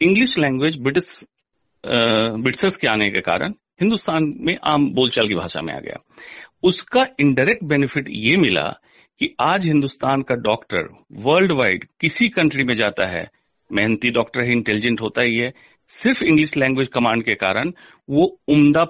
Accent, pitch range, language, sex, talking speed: native, 115-170 Hz, Hindi, male, 150 wpm